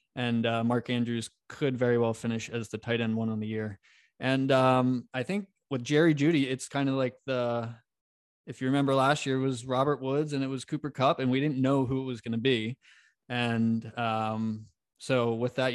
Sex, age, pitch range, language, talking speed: male, 20-39, 120-135 Hz, English, 215 wpm